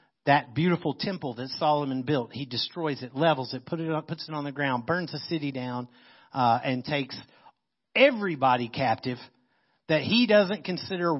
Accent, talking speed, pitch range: American, 160 wpm, 135-190 Hz